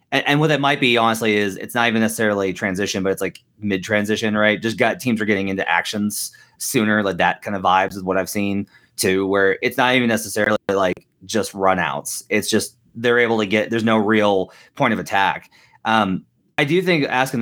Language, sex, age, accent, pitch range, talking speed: English, male, 30-49, American, 100-120 Hz, 205 wpm